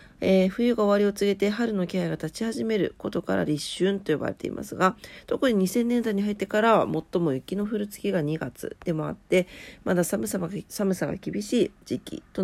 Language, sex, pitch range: Japanese, female, 160-210 Hz